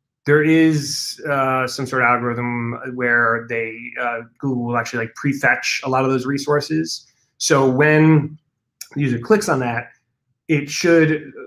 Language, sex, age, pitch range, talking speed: English, male, 30-49, 120-145 Hz, 150 wpm